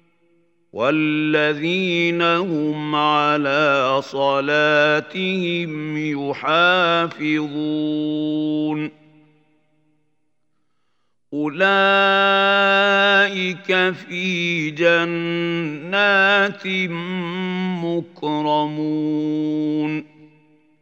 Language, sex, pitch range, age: Arabic, male, 150-175 Hz, 50-69